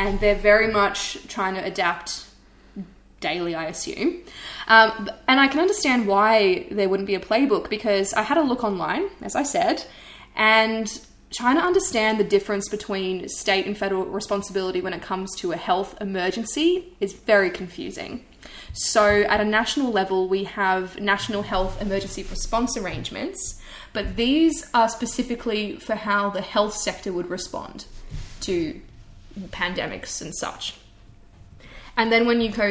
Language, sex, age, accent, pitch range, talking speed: English, female, 20-39, Australian, 185-220 Hz, 150 wpm